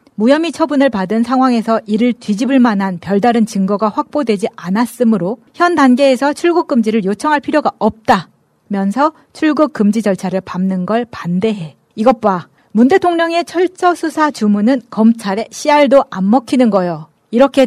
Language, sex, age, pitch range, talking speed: English, female, 40-59, 205-275 Hz, 120 wpm